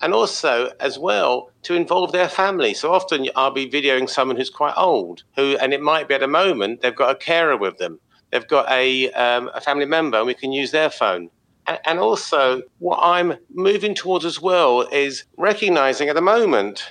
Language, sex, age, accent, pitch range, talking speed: English, male, 50-69, British, 130-180 Hz, 205 wpm